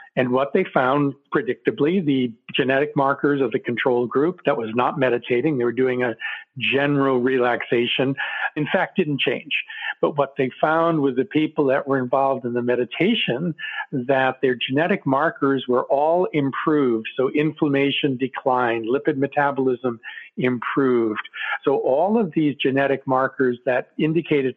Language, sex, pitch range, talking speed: English, male, 125-150 Hz, 145 wpm